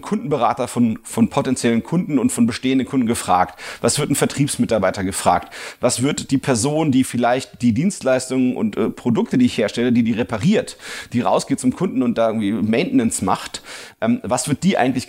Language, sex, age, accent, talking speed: German, male, 30-49, German, 185 wpm